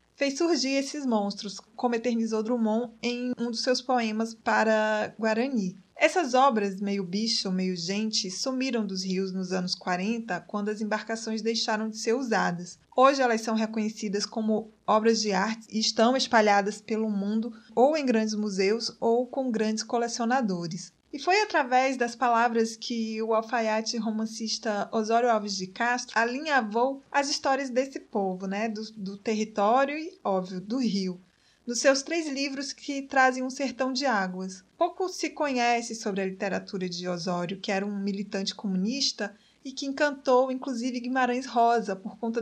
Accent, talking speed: Brazilian, 155 wpm